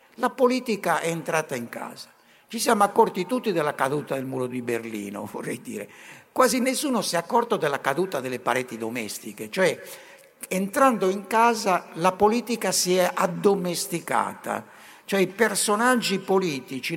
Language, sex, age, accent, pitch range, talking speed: Italian, male, 60-79, native, 150-215 Hz, 145 wpm